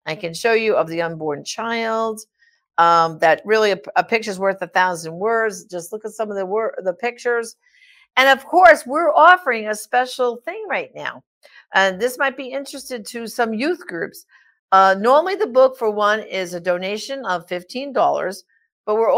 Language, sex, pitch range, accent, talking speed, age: English, female, 190-265 Hz, American, 195 wpm, 50-69